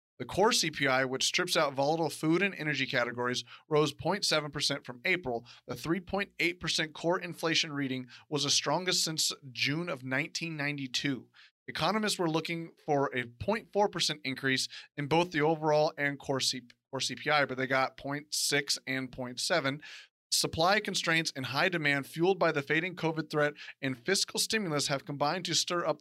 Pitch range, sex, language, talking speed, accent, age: 135-165 Hz, male, English, 150 wpm, American, 30-49